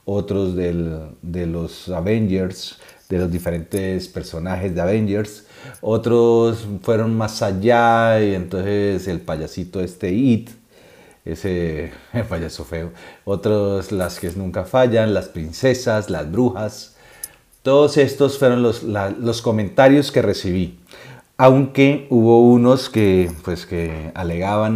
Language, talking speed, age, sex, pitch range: Spanish, 120 wpm, 40-59, male, 90-115 Hz